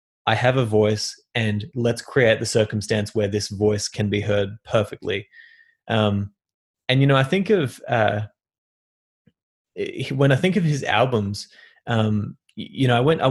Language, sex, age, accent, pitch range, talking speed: English, male, 20-39, Australian, 105-130 Hz, 160 wpm